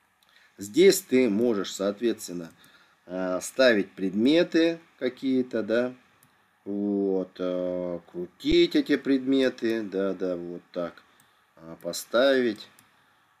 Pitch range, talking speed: 95-125 Hz, 75 wpm